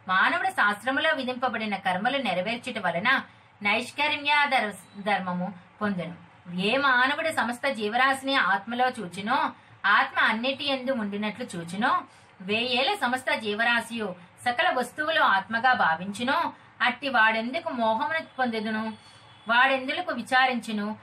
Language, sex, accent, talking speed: Telugu, female, native, 85 wpm